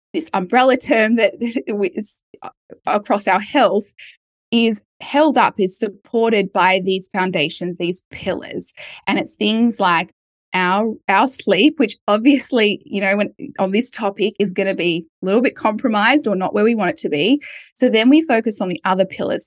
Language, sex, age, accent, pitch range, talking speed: English, female, 10-29, Australian, 190-230 Hz, 175 wpm